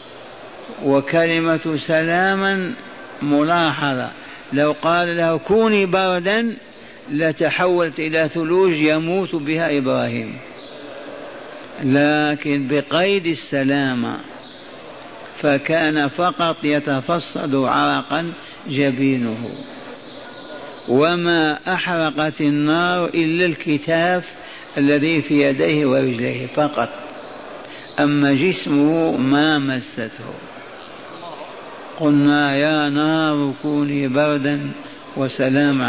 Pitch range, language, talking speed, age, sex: 145-170 Hz, Arabic, 70 wpm, 60-79, male